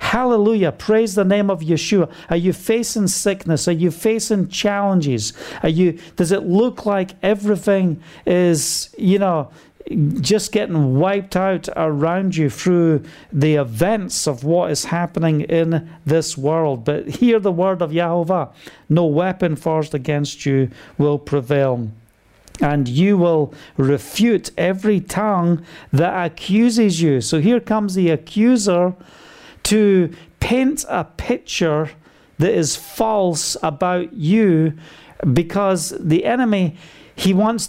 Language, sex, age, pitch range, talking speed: English, male, 50-69, 155-195 Hz, 130 wpm